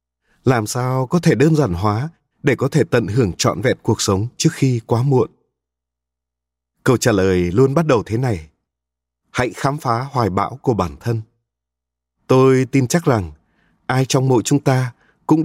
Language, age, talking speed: Vietnamese, 20-39, 180 wpm